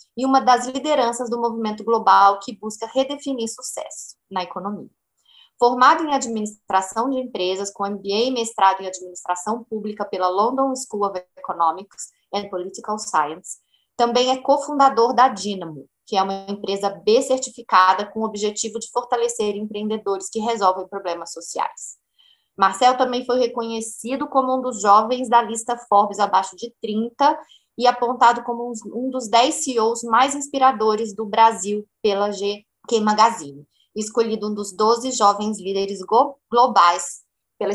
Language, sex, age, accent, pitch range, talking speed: Portuguese, female, 20-39, Brazilian, 195-240 Hz, 145 wpm